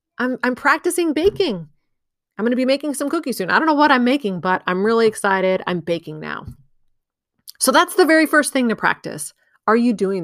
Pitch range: 190-275 Hz